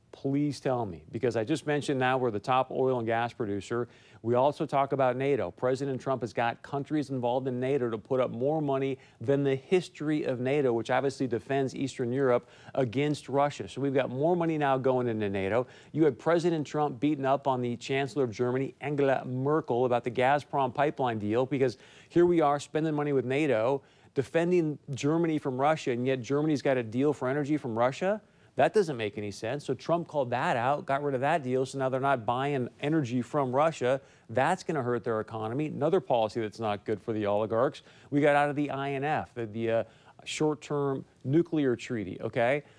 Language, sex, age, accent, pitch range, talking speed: English, male, 40-59, American, 125-155 Hz, 200 wpm